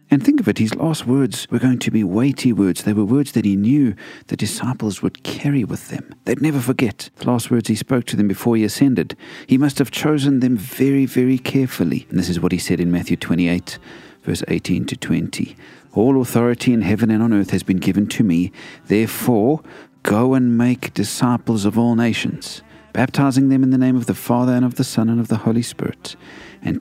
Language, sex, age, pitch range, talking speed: English, male, 40-59, 100-130 Hz, 215 wpm